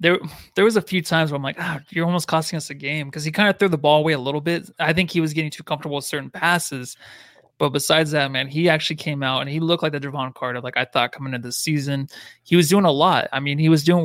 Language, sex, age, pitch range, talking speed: English, male, 20-39, 145-170 Hz, 295 wpm